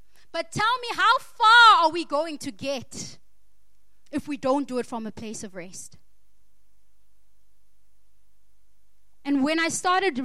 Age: 20-39